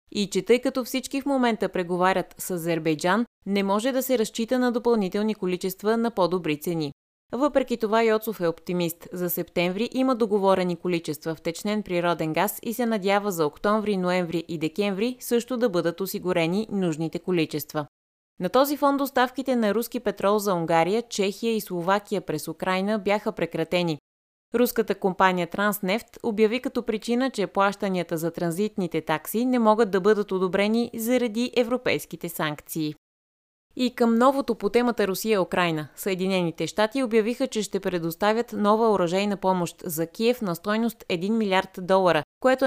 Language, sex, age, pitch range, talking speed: Bulgarian, female, 20-39, 175-230 Hz, 150 wpm